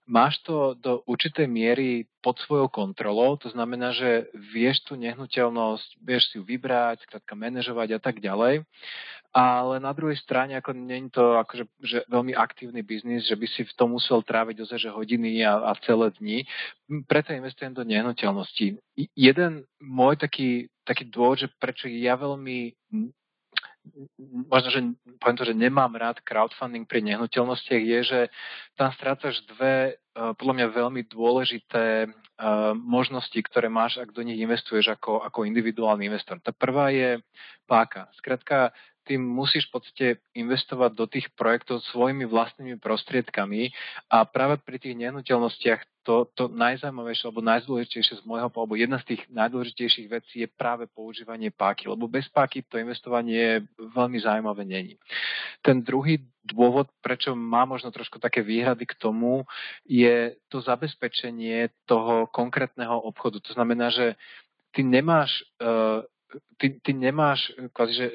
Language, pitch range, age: Slovak, 115-130 Hz, 40-59